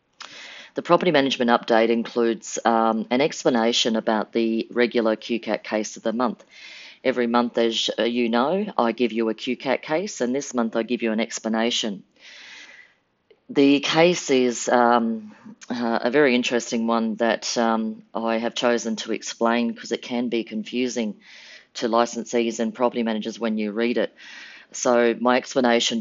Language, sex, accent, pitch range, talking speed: English, female, Australian, 110-125 Hz, 155 wpm